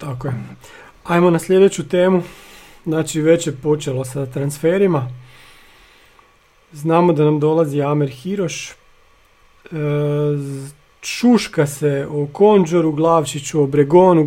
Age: 40-59